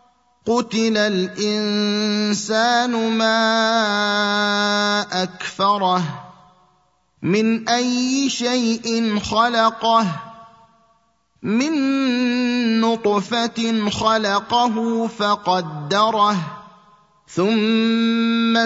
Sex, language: male, Arabic